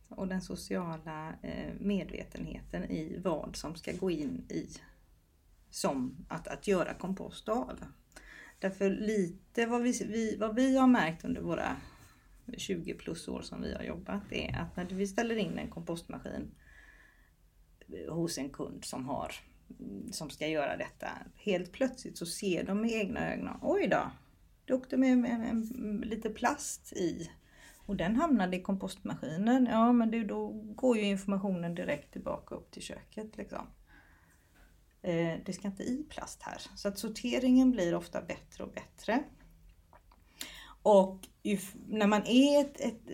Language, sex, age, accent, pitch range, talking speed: Swedish, female, 30-49, native, 170-230 Hz, 145 wpm